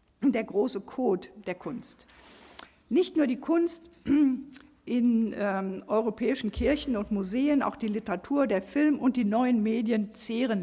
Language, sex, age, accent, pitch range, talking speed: German, female, 50-69, German, 190-245 Hz, 140 wpm